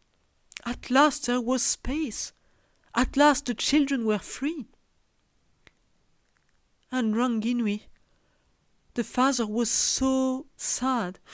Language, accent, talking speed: English, French, 95 wpm